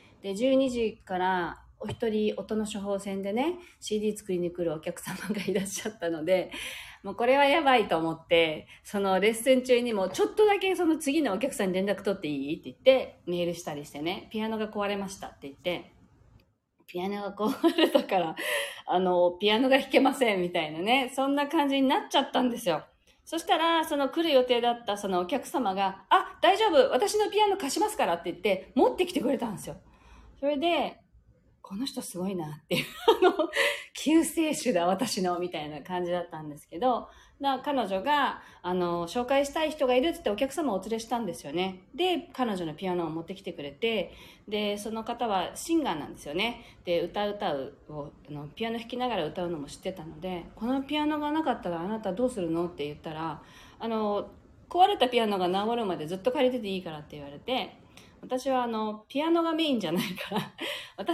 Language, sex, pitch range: Japanese, female, 175-270 Hz